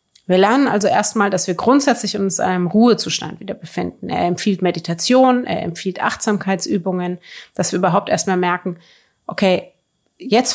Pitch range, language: 185-235 Hz, German